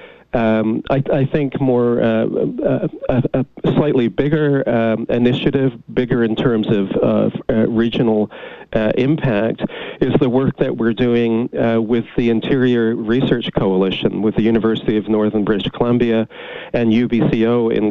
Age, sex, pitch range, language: 40-59, male, 110-125 Hz, English